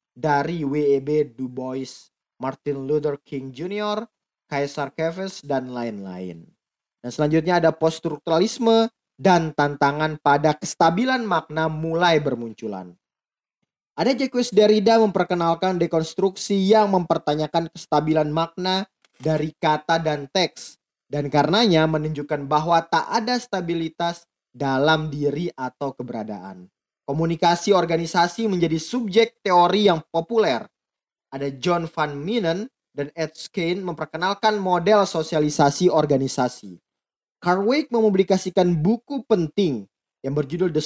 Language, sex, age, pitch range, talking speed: Indonesian, male, 20-39, 145-190 Hz, 105 wpm